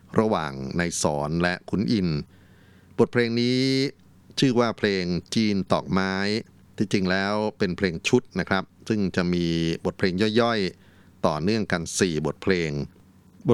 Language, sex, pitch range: Thai, male, 85-100 Hz